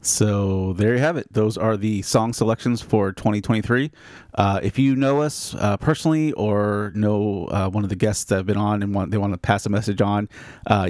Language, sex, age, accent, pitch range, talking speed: English, male, 30-49, American, 100-115 Hz, 220 wpm